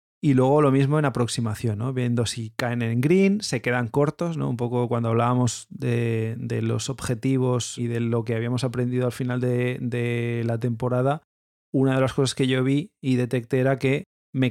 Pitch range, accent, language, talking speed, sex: 115-135 Hz, Spanish, Spanish, 200 wpm, male